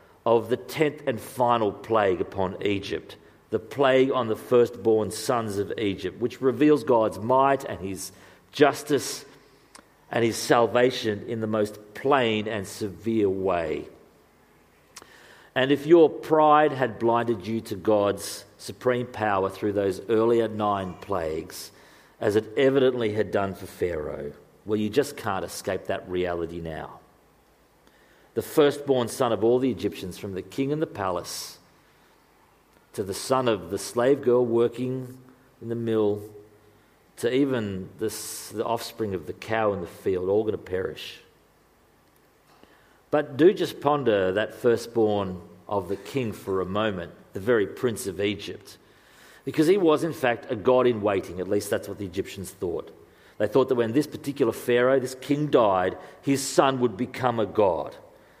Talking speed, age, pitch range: 155 wpm, 50-69, 105-130 Hz